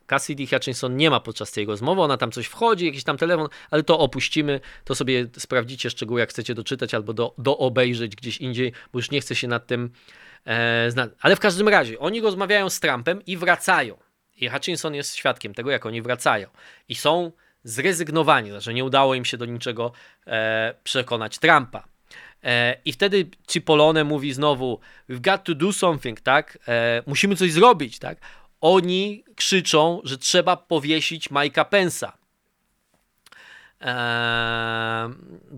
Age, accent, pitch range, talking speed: 20-39, native, 120-165 Hz, 160 wpm